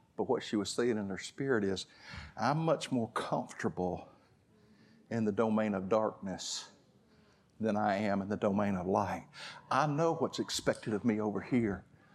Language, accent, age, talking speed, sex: English, American, 50-69, 170 wpm, male